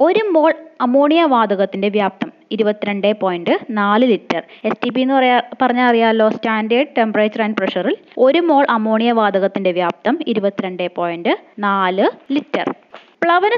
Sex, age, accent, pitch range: female, 20-39, native, 200-275 Hz